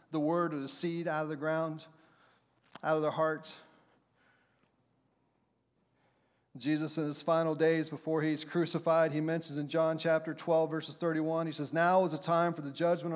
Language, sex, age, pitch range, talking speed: English, male, 40-59, 155-175 Hz, 175 wpm